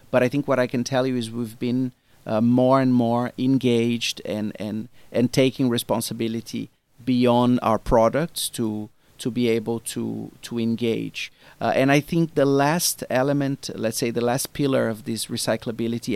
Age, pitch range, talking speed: 40-59, 115-130 Hz, 170 wpm